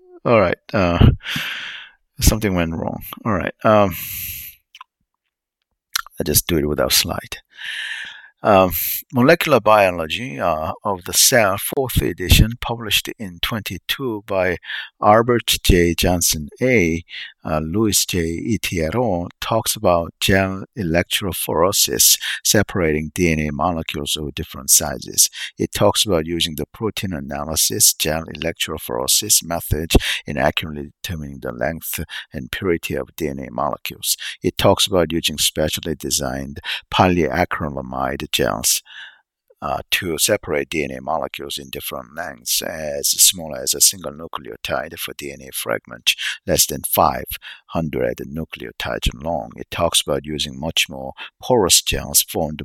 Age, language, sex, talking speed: 50-69, English, male, 120 wpm